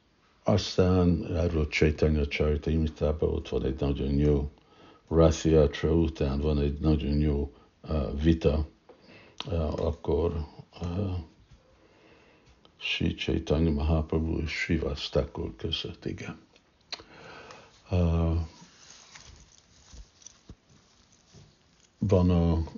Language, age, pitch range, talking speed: Hungarian, 60-79, 80-100 Hz, 85 wpm